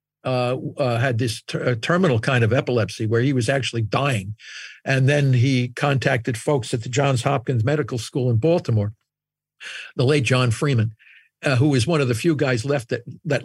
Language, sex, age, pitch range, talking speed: English, male, 50-69, 125-165 Hz, 185 wpm